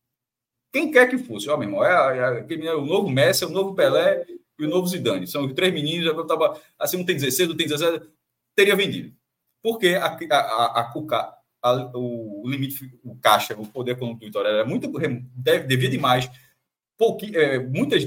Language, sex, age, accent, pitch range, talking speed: Portuguese, male, 20-39, Brazilian, 130-190 Hz, 200 wpm